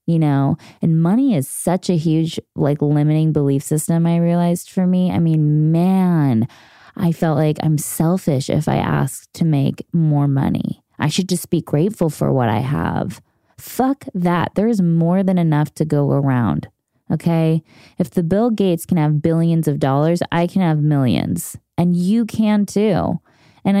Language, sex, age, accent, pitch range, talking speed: English, female, 20-39, American, 150-180 Hz, 175 wpm